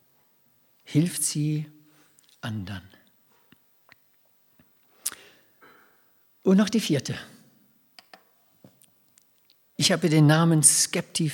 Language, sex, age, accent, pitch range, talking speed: German, male, 60-79, German, 140-205 Hz, 70 wpm